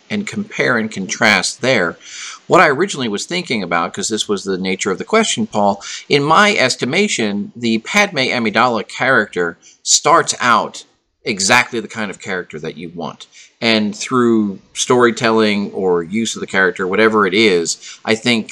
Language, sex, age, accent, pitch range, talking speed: English, male, 40-59, American, 110-145 Hz, 160 wpm